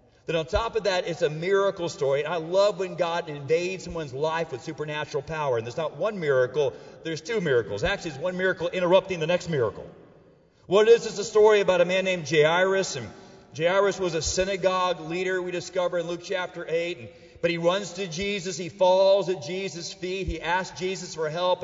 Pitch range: 135-190 Hz